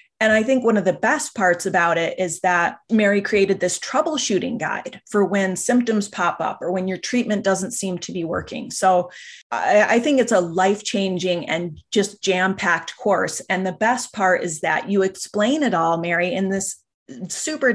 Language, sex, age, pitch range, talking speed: English, female, 30-49, 180-210 Hz, 190 wpm